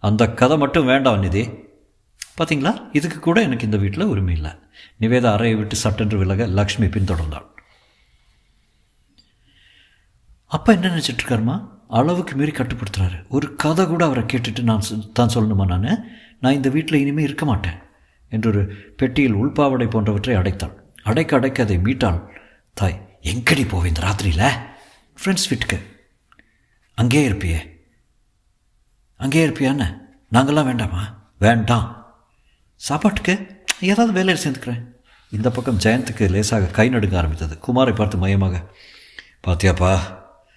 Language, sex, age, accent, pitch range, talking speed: Tamil, male, 50-69, native, 90-125 Hz, 115 wpm